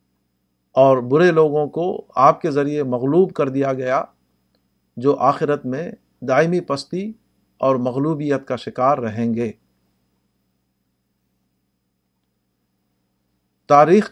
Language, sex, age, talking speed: Urdu, male, 50-69, 100 wpm